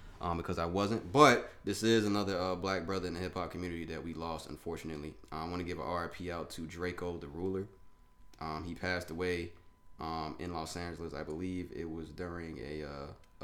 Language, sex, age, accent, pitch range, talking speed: English, male, 20-39, American, 80-95 Hz, 205 wpm